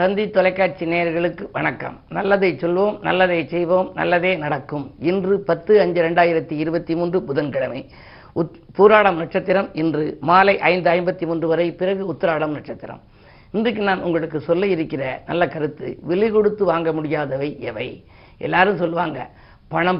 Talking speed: 130 wpm